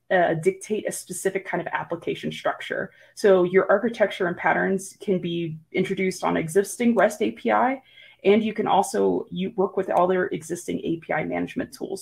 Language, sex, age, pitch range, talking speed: English, female, 20-39, 165-205 Hz, 160 wpm